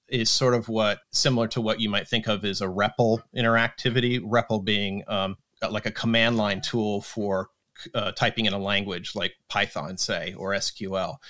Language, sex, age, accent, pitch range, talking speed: English, male, 30-49, American, 105-130 Hz, 180 wpm